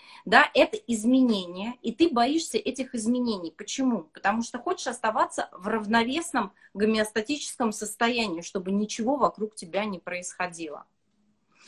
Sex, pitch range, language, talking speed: female, 200-255 Hz, Russian, 120 wpm